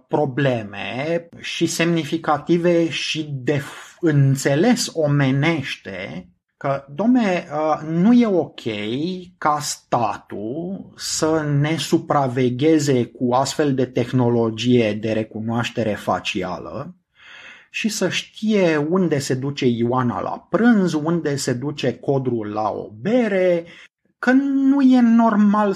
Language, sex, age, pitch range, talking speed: Romanian, male, 30-49, 140-195 Hz, 100 wpm